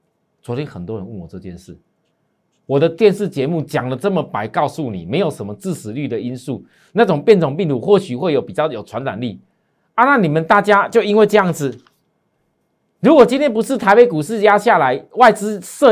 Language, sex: Chinese, male